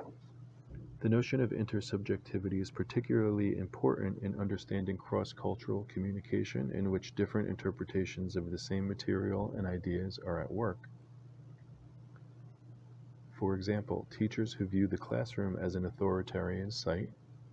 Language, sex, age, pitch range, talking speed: English, male, 40-59, 95-120 Hz, 120 wpm